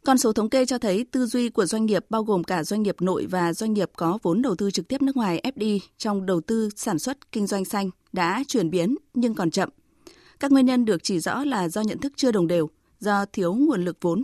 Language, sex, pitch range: Vietnamese, female, 185-240 Hz